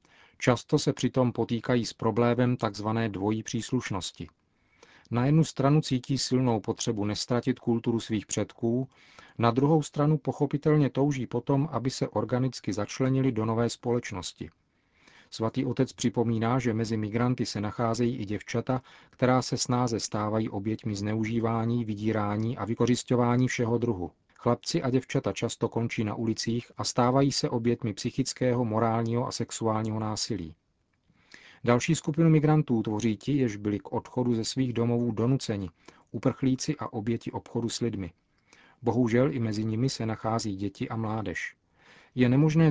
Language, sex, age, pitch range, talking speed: Czech, male, 40-59, 110-130 Hz, 140 wpm